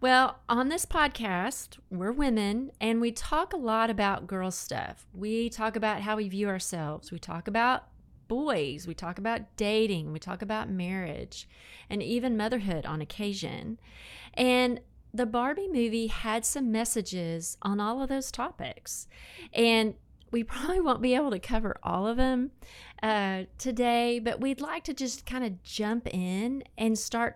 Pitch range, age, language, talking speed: 195-245 Hz, 30-49, English, 160 wpm